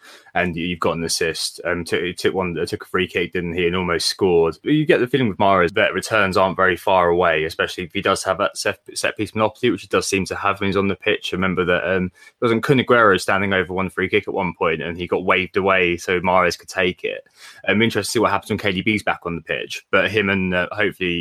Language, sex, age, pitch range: English, male, 20-39, 90-105 Hz